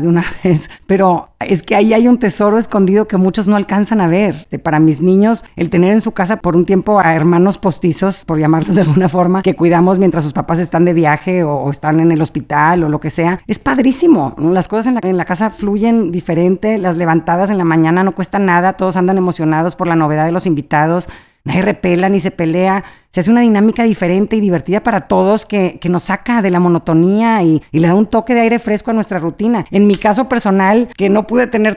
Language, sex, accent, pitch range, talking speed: Spanish, female, Mexican, 175-210 Hz, 230 wpm